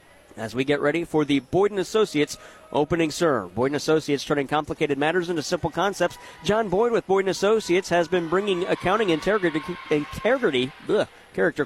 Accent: American